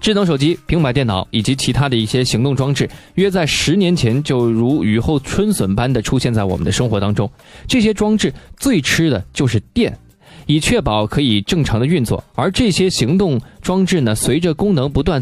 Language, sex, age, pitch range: Chinese, male, 20-39, 110-175 Hz